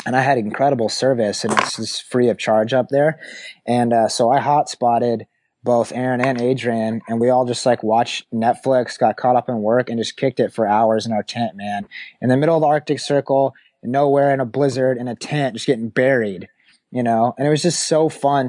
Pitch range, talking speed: 115-135 Hz, 225 wpm